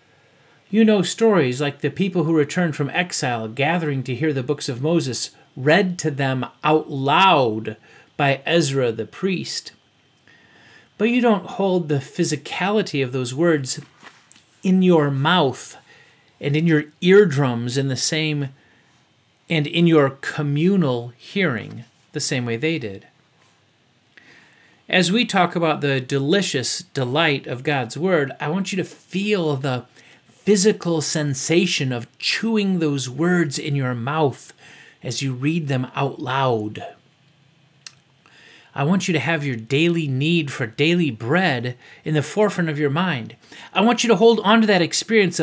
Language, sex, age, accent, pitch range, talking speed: English, male, 40-59, American, 135-175 Hz, 150 wpm